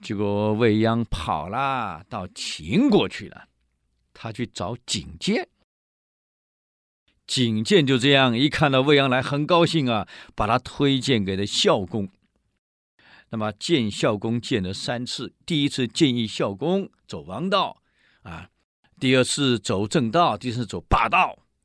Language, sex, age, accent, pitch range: Chinese, male, 50-69, native, 90-125 Hz